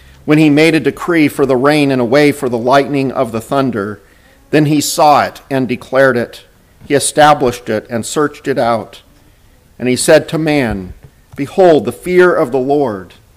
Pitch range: 115-150 Hz